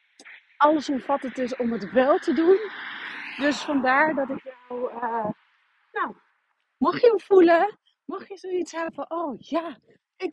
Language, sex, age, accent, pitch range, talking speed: Dutch, female, 40-59, Dutch, 240-305 Hz, 165 wpm